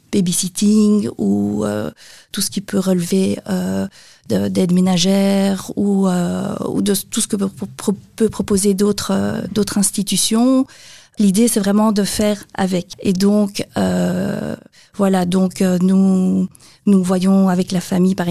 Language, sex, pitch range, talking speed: French, female, 185-205 Hz, 150 wpm